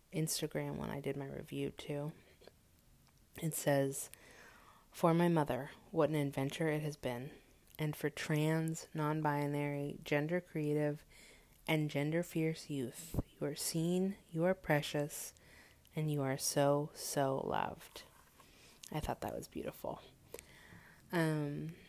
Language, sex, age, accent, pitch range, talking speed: English, female, 30-49, American, 140-155 Hz, 125 wpm